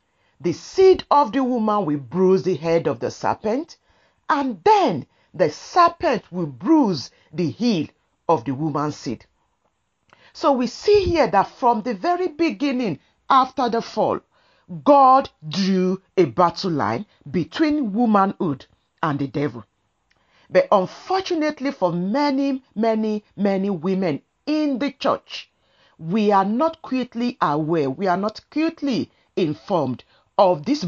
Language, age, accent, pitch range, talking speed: English, 50-69, Nigerian, 165-270 Hz, 130 wpm